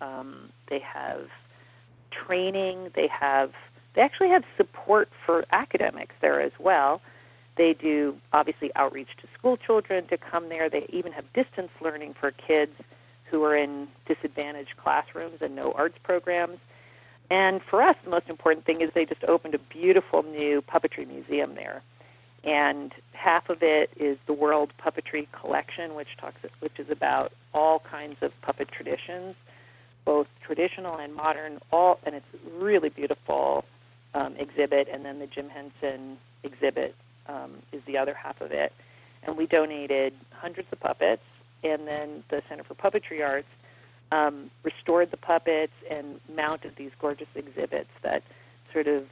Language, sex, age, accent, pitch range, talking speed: English, female, 50-69, American, 130-165 Hz, 155 wpm